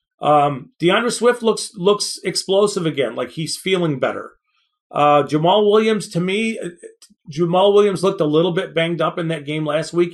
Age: 30-49